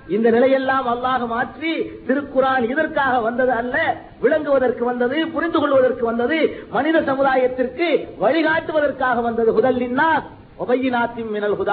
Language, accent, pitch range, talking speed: Tamil, native, 235-285 Hz, 75 wpm